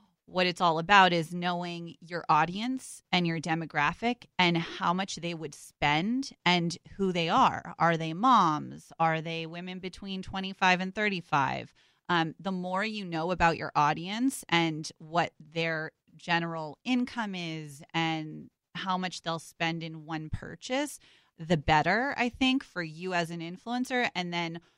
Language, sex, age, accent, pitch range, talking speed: English, female, 30-49, American, 160-185 Hz, 155 wpm